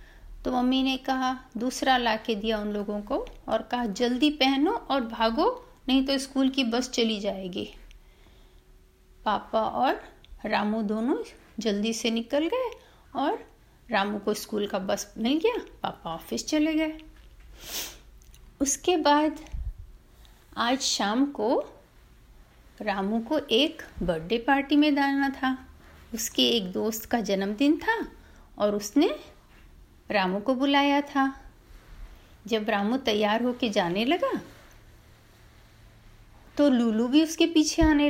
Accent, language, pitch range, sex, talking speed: native, Hindi, 220-300 Hz, female, 130 wpm